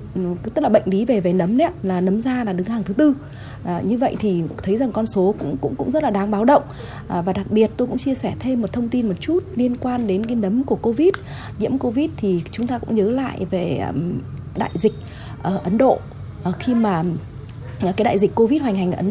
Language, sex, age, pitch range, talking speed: Vietnamese, female, 20-39, 175-230 Hz, 245 wpm